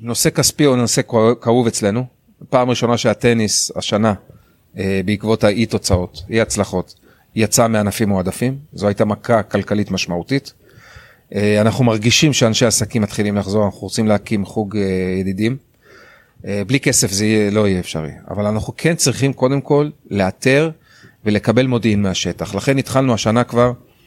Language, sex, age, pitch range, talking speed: Hebrew, male, 30-49, 105-130 Hz, 135 wpm